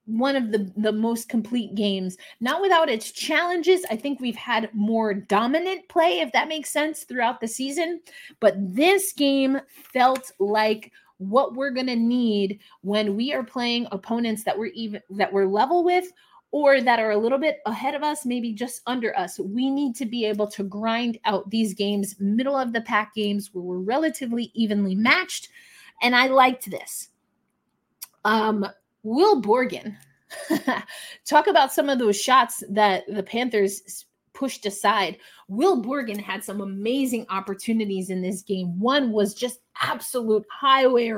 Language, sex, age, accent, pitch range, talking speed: English, female, 30-49, American, 200-265 Hz, 165 wpm